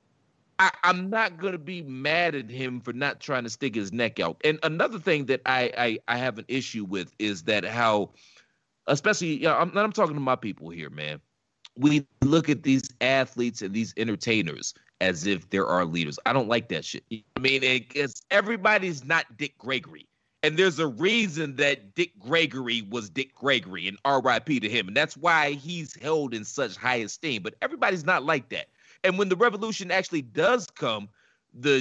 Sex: male